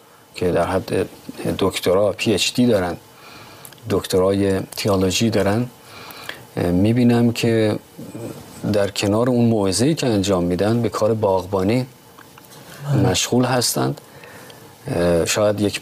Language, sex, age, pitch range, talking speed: Persian, male, 40-59, 100-120 Hz, 105 wpm